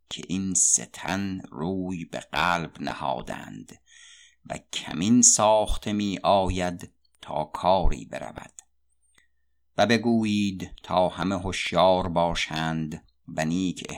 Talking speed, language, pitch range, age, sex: 100 wpm, Persian, 80-100 Hz, 50-69, male